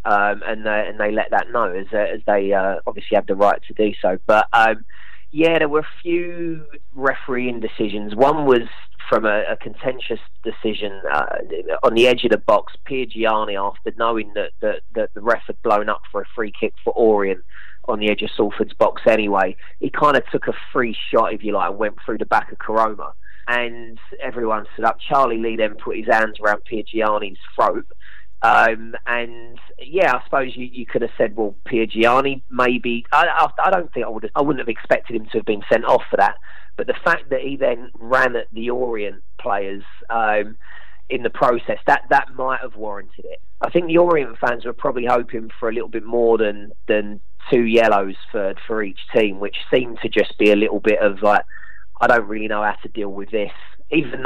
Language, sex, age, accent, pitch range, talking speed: English, male, 20-39, British, 105-125 Hz, 215 wpm